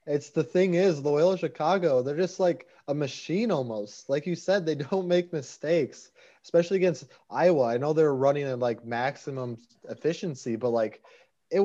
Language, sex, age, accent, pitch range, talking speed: English, male, 20-39, American, 120-145 Hz, 170 wpm